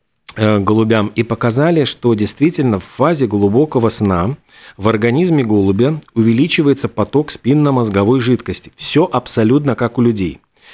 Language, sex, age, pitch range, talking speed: Russian, male, 40-59, 110-145 Hz, 110 wpm